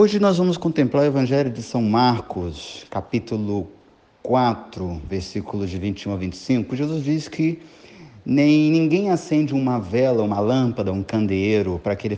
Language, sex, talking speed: Portuguese, male, 155 wpm